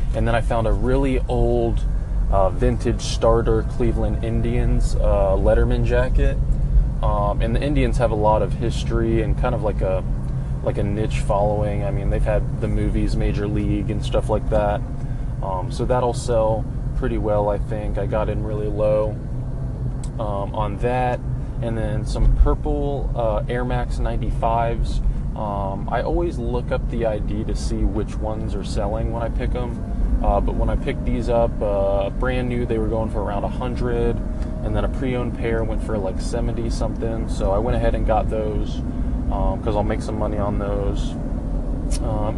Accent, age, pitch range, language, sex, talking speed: American, 20-39, 105-125 Hz, English, male, 185 wpm